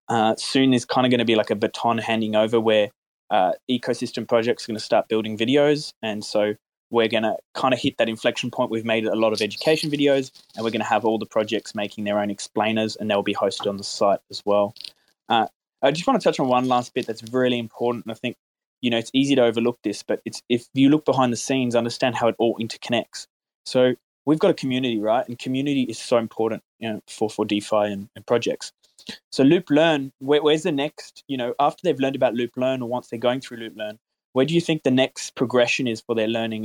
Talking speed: 245 wpm